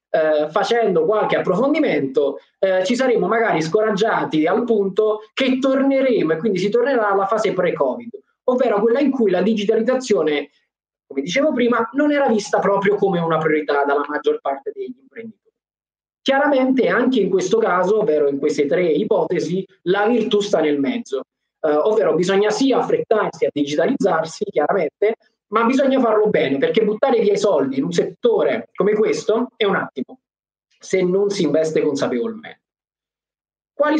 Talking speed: 155 wpm